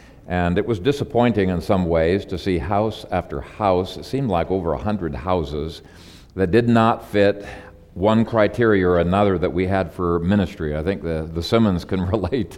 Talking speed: 185 wpm